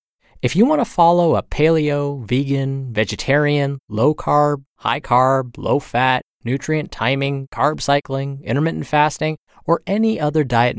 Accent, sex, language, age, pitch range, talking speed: American, male, English, 20-39, 115-155 Hz, 120 wpm